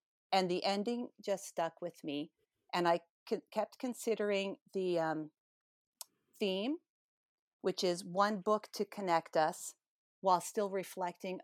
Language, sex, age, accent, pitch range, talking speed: English, female, 40-59, American, 165-205 Hz, 125 wpm